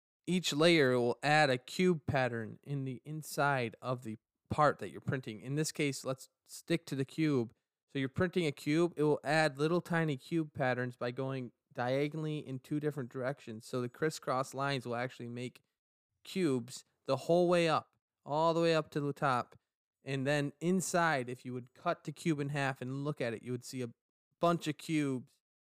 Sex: male